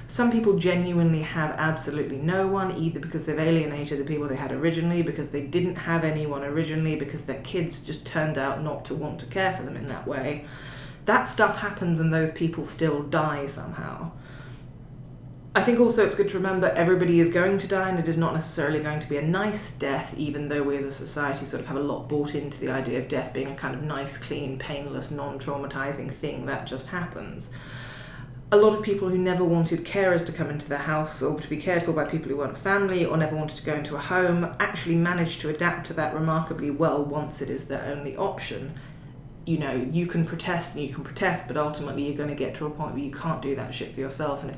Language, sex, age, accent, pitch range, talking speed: English, female, 20-39, British, 140-165 Hz, 230 wpm